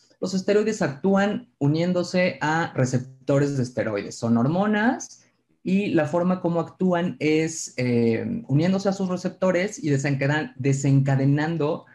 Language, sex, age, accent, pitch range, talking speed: Spanish, male, 30-49, Mexican, 130-155 Hz, 115 wpm